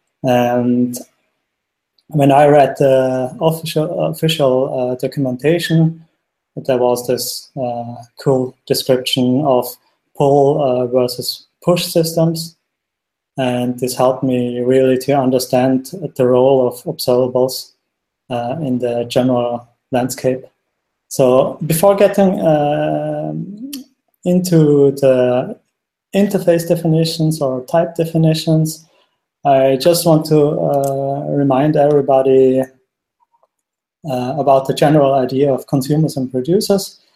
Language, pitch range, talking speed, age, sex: English, 130-165 Hz, 105 wpm, 20-39, male